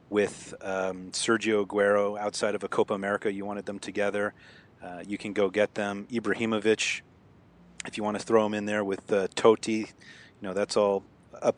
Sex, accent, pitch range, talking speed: male, American, 100-115 Hz, 185 wpm